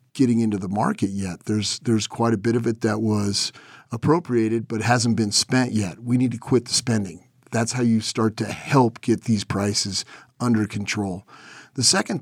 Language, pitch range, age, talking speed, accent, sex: English, 105-125 Hz, 50-69, 190 wpm, American, male